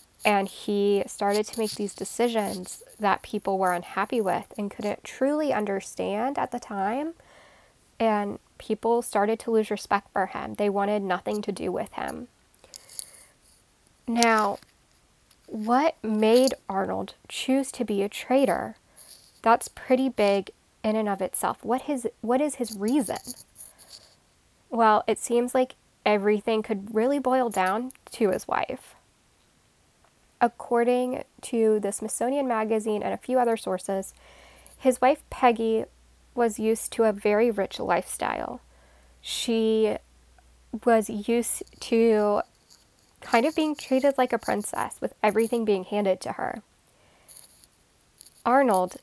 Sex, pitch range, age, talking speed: female, 205-245 Hz, 10-29, 130 wpm